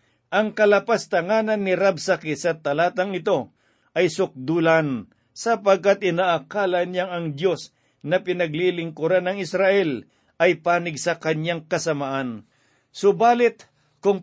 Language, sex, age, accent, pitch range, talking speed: Filipino, male, 50-69, native, 150-180 Hz, 105 wpm